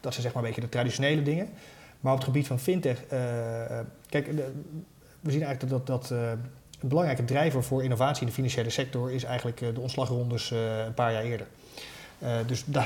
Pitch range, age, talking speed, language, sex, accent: 120-140 Hz, 30-49, 200 wpm, Dutch, male, Dutch